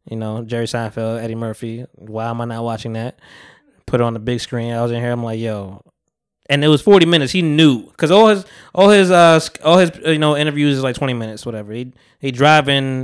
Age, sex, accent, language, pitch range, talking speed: 20-39, male, American, English, 115-155 Hz, 235 wpm